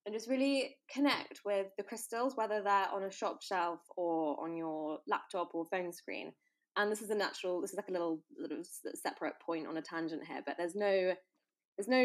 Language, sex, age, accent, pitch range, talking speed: English, female, 20-39, British, 175-220 Hz, 205 wpm